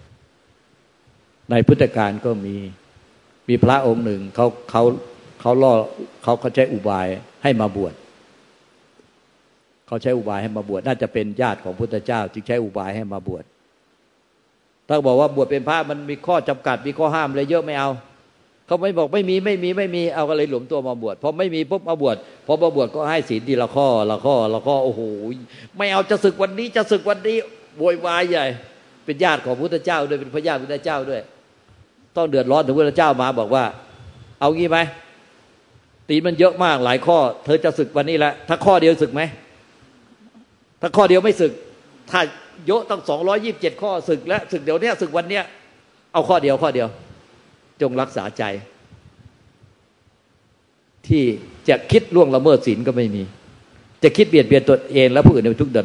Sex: male